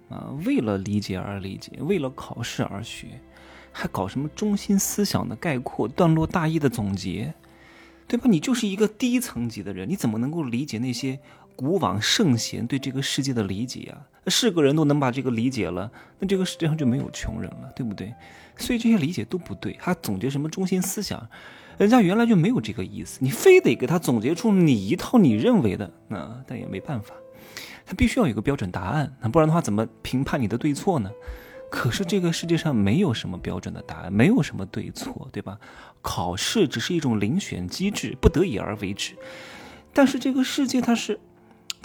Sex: male